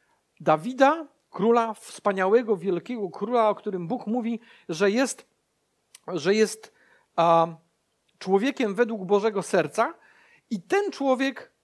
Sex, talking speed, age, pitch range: male, 110 wpm, 50-69, 185-245 Hz